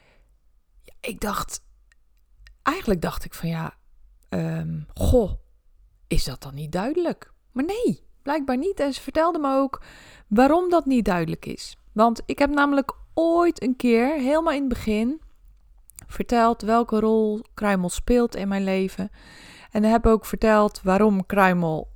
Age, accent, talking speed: 20-39, Dutch, 145 wpm